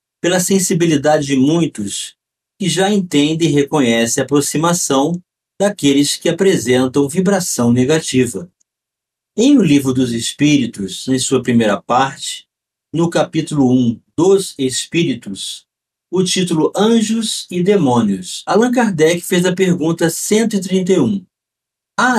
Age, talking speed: 50-69, 115 wpm